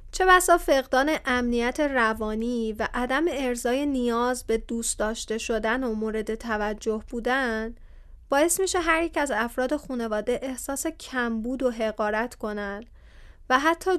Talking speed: 135 wpm